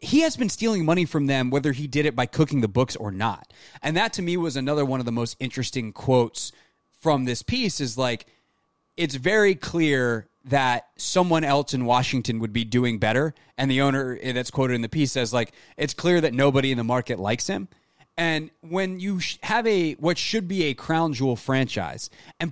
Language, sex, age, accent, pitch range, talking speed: English, male, 20-39, American, 125-165 Hz, 210 wpm